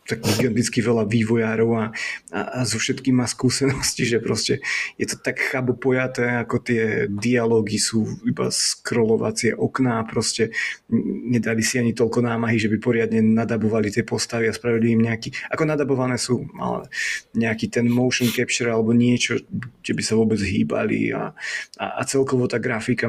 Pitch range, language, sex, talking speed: 115-125 Hz, Slovak, male, 155 wpm